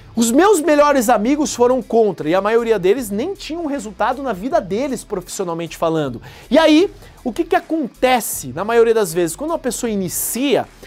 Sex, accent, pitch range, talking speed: male, Brazilian, 215-270 Hz, 180 wpm